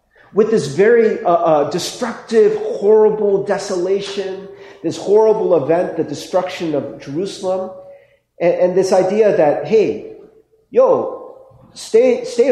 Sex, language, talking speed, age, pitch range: male, English, 115 wpm, 40-59, 170-275 Hz